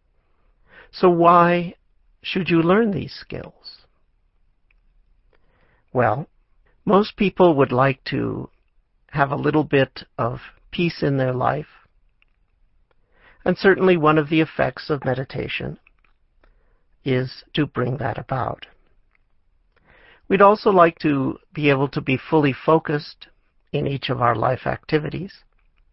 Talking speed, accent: 120 wpm, American